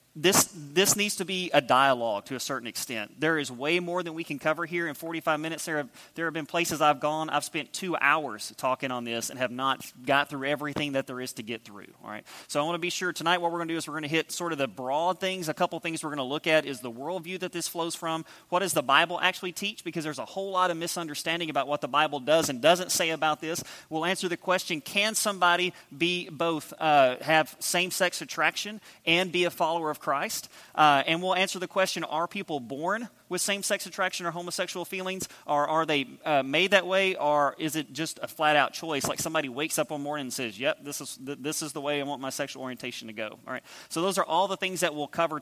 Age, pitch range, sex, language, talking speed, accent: 30-49, 145-180 Hz, male, English, 255 wpm, American